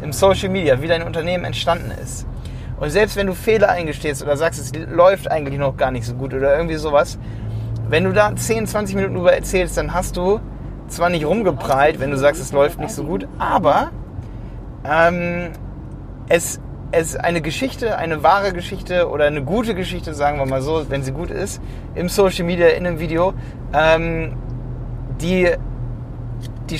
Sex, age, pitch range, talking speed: male, 30-49, 120-170 Hz, 175 wpm